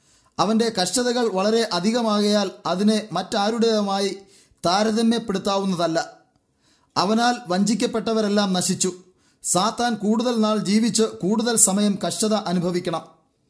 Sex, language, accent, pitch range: male, English, Indian, 190-225 Hz